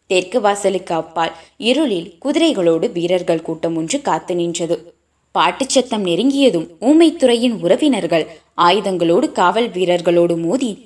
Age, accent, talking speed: 20-39, native, 100 wpm